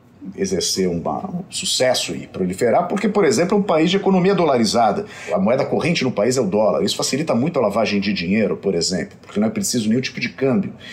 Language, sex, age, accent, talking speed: Portuguese, male, 50-69, Brazilian, 215 wpm